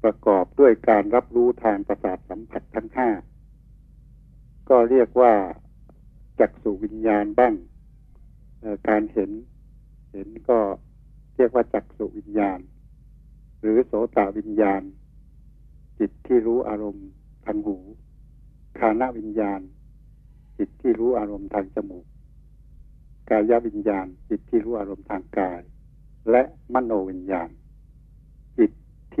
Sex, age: male, 60-79